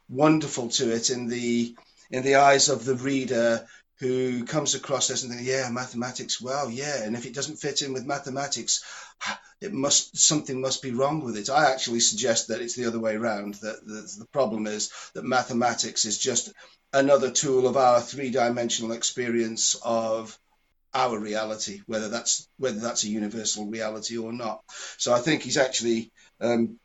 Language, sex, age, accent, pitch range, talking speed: English, male, 40-59, British, 115-135 Hz, 175 wpm